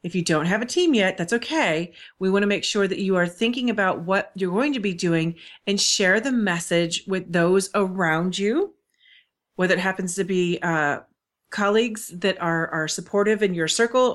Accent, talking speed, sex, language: American, 200 wpm, female, English